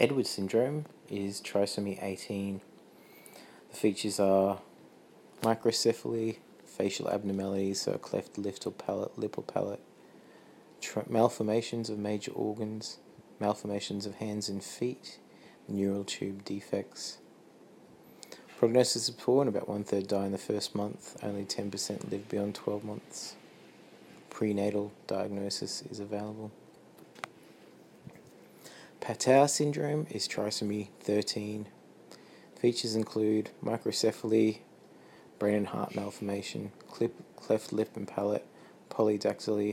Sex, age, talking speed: male, 20-39, 110 wpm